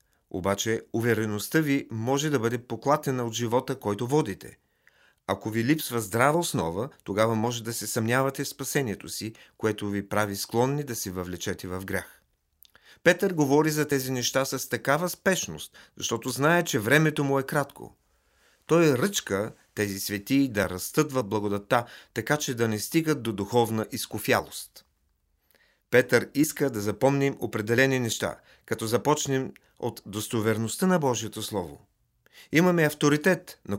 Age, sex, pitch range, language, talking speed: 40-59, male, 105-140 Hz, Bulgarian, 140 wpm